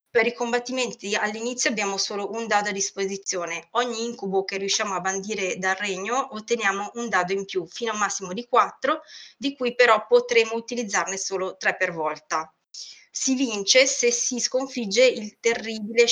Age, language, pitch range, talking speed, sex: 30-49, Italian, 195-240 Hz, 170 wpm, female